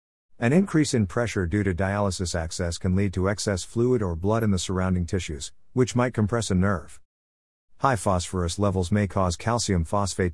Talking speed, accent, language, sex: 180 wpm, American, English, male